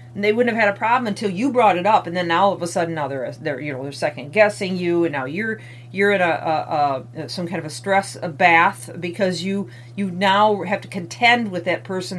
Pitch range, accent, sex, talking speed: 165-205 Hz, American, female, 255 wpm